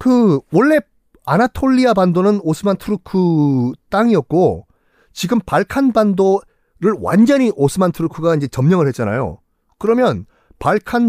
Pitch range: 140-235 Hz